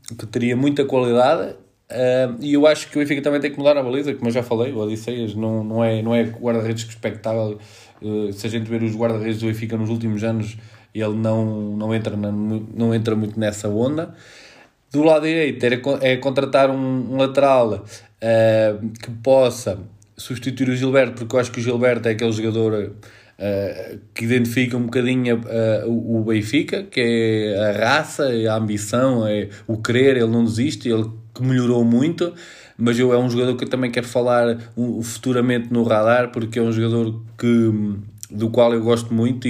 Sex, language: male, Portuguese